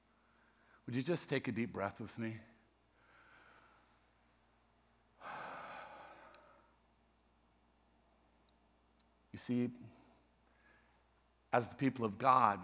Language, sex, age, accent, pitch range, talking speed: English, male, 50-69, American, 110-150 Hz, 75 wpm